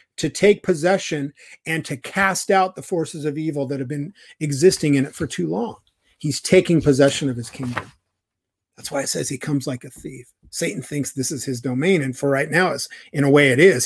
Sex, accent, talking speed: male, American, 215 wpm